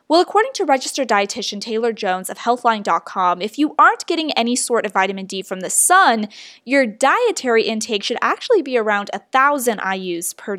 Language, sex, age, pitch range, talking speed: English, female, 10-29, 205-275 Hz, 175 wpm